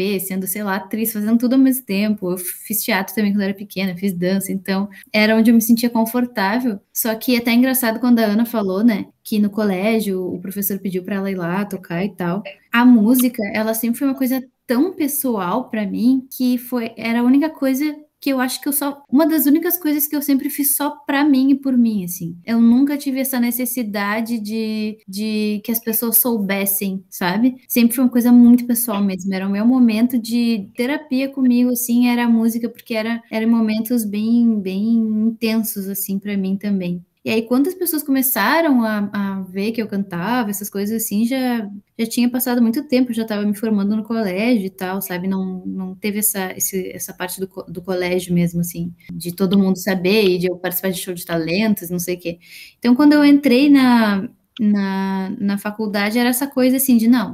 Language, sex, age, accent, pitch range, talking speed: Portuguese, female, 10-29, Brazilian, 195-245 Hz, 210 wpm